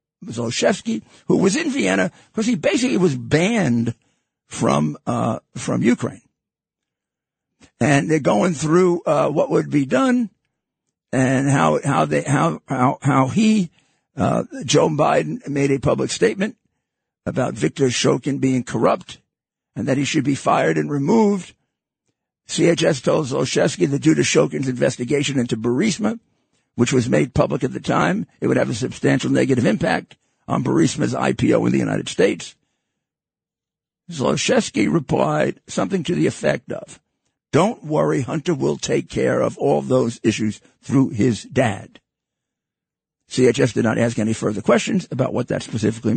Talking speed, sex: 145 wpm, male